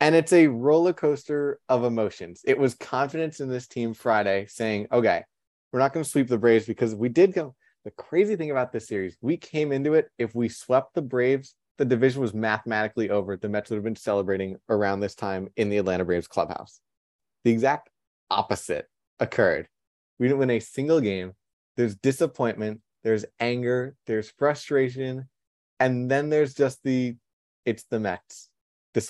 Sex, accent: male, American